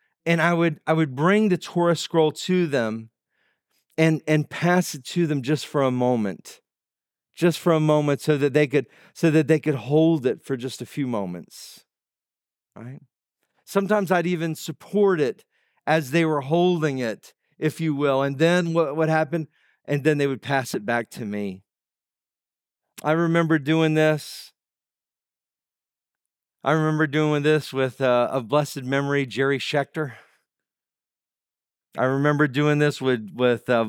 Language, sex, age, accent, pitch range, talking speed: English, male, 50-69, American, 130-155 Hz, 160 wpm